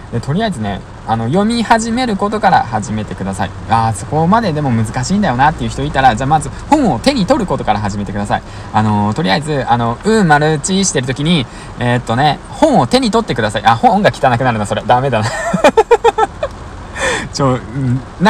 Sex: male